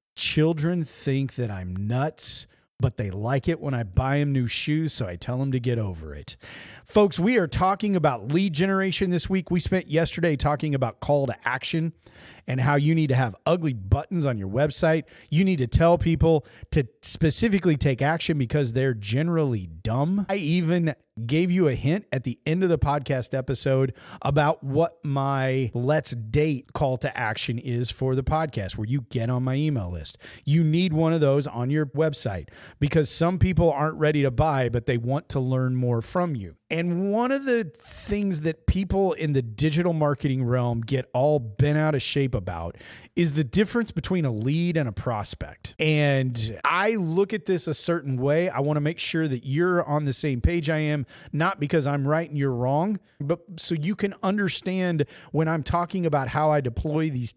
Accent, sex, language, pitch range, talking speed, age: American, male, English, 130-170 Hz, 195 wpm, 40-59